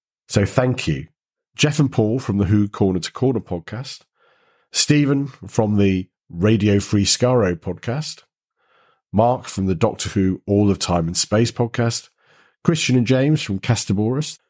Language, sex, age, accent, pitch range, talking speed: English, male, 40-59, British, 95-125 Hz, 150 wpm